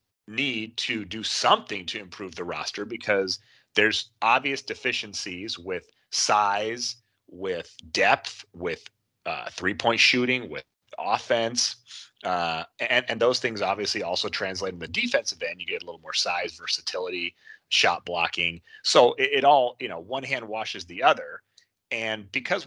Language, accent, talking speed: English, American, 150 wpm